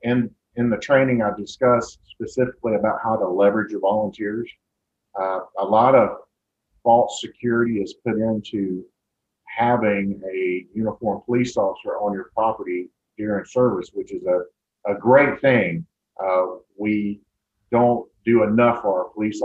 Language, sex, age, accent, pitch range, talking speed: English, male, 50-69, American, 100-120 Hz, 140 wpm